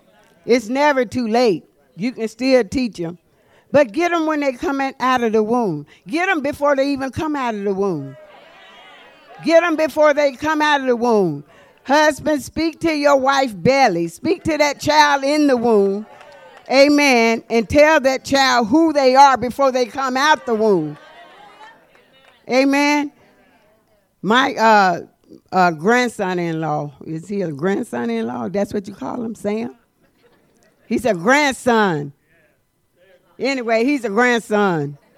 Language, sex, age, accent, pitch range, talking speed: English, female, 50-69, American, 205-270 Hz, 145 wpm